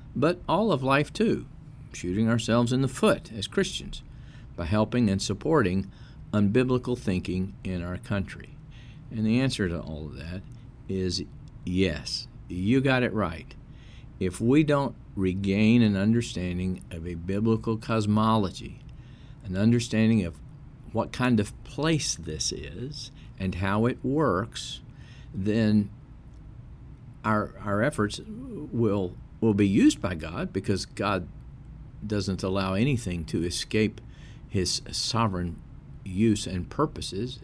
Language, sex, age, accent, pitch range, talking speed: English, male, 50-69, American, 95-130 Hz, 125 wpm